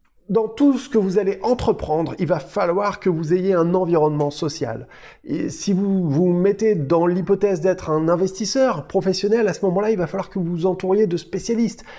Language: French